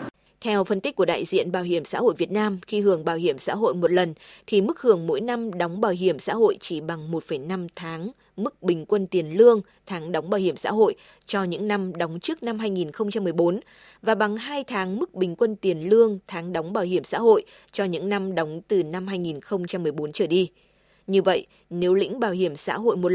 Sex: female